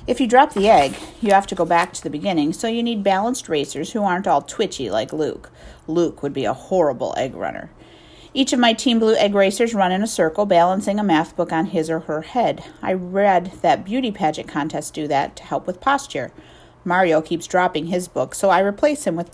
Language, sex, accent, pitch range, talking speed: English, female, American, 165-220 Hz, 225 wpm